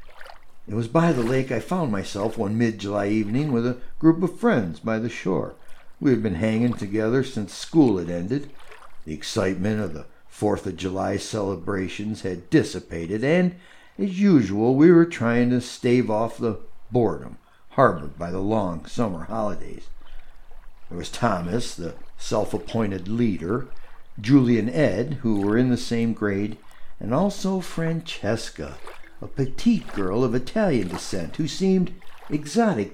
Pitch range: 105-140 Hz